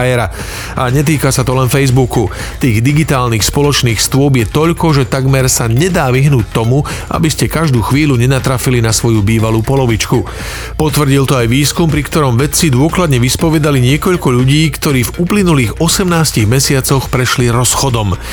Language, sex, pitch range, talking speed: Slovak, male, 120-150 Hz, 145 wpm